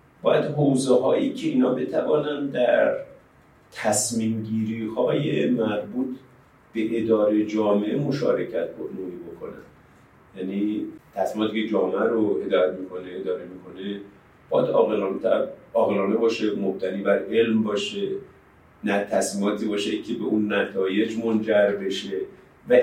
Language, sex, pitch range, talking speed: Persian, male, 105-145 Hz, 110 wpm